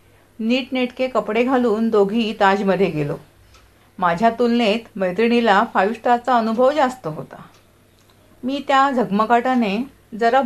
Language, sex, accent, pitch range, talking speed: Marathi, female, native, 170-250 Hz, 110 wpm